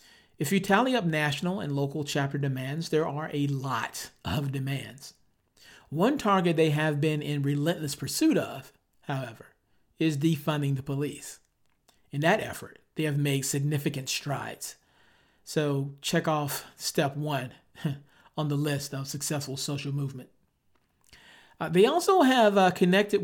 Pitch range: 140-170 Hz